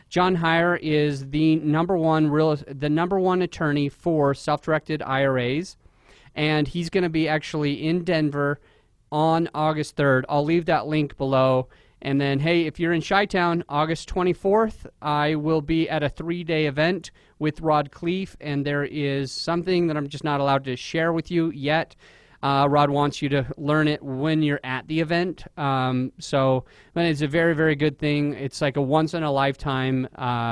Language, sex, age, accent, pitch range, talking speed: English, male, 30-49, American, 140-165 Hz, 175 wpm